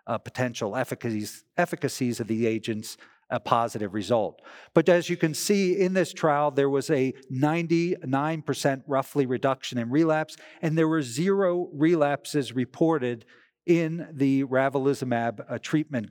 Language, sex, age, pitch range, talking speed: English, male, 50-69, 120-155 Hz, 140 wpm